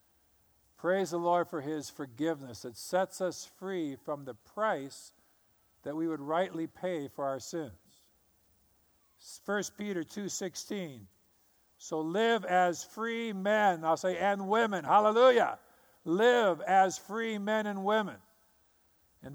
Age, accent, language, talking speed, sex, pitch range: 50-69, American, English, 125 wpm, male, 150-200 Hz